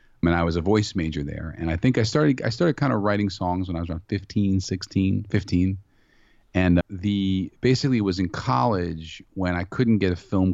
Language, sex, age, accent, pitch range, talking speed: English, male, 40-59, American, 80-100 Hz, 215 wpm